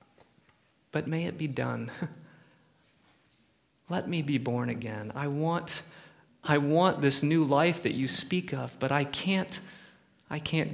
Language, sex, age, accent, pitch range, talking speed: English, male, 30-49, American, 120-155 Hz, 135 wpm